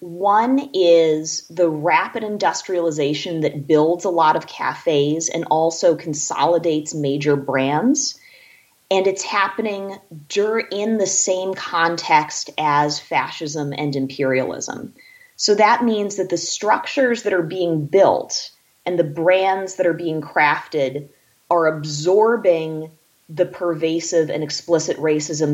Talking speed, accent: 120 wpm, American